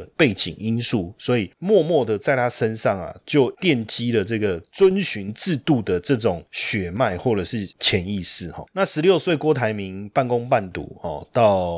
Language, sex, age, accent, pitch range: Chinese, male, 30-49, native, 100-135 Hz